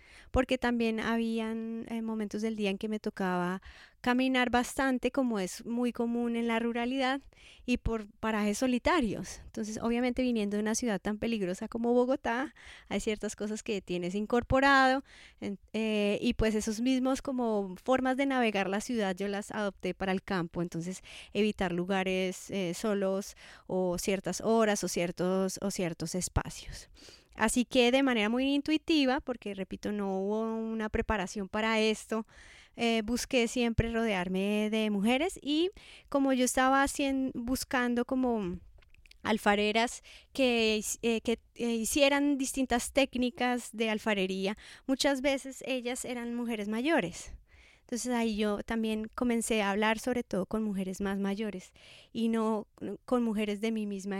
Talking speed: 145 wpm